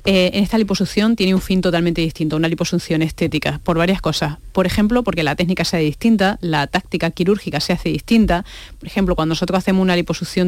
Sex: female